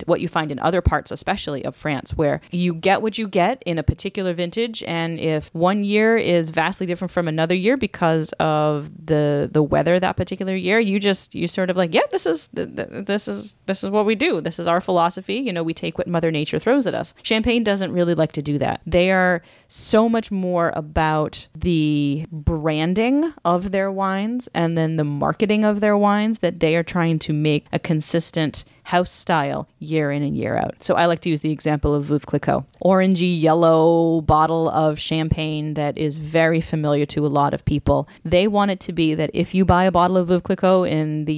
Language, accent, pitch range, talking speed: English, American, 150-185 Hz, 215 wpm